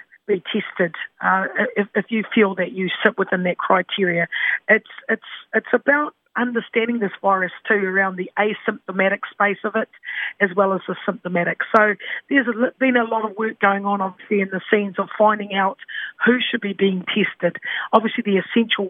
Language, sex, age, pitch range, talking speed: English, female, 40-59, 185-215 Hz, 180 wpm